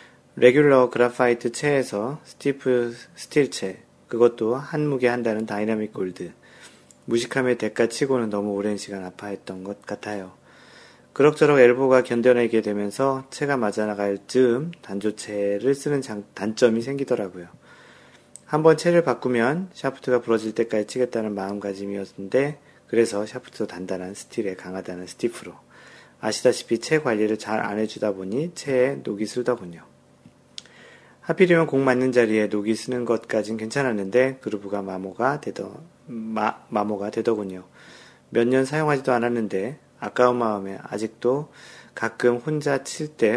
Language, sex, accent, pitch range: Korean, male, native, 105-130 Hz